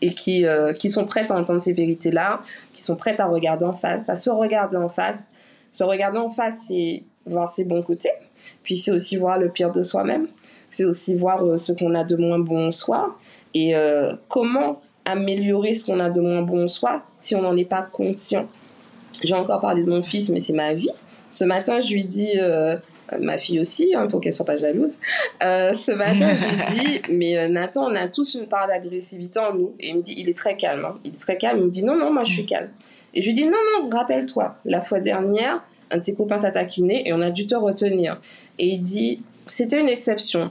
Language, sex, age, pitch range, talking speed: French, female, 20-39, 170-220 Hz, 250 wpm